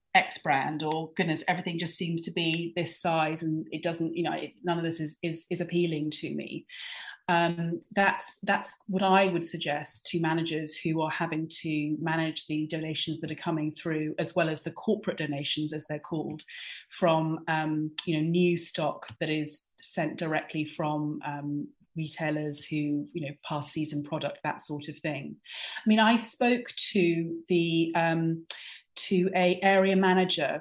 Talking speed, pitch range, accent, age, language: 175 wpm, 155-175 Hz, British, 30-49, English